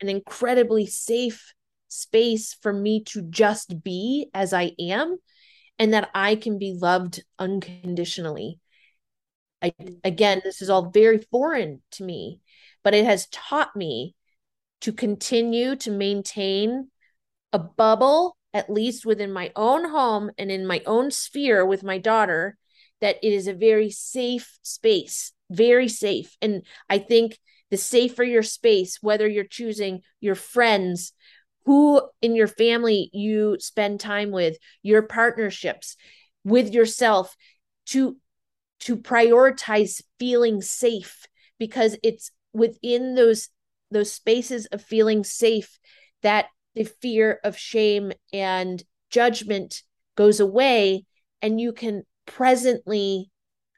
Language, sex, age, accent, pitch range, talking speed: English, female, 30-49, American, 200-235 Hz, 125 wpm